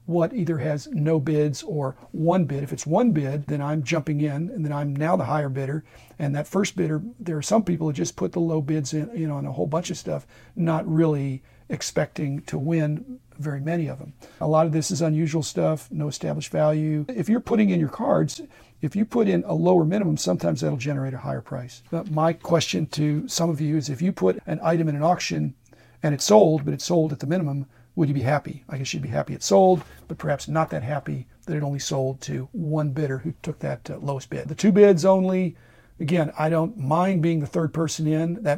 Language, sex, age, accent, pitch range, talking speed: English, male, 50-69, American, 140-165 Hz, 235 wpm